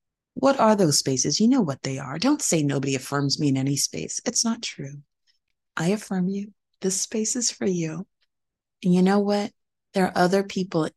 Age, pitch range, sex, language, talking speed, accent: 30-49, 140-180 Hz, female, English, 195 wpm, American